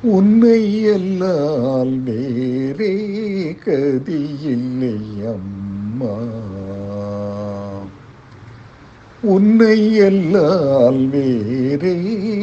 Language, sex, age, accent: Tamil, male, 60-79, native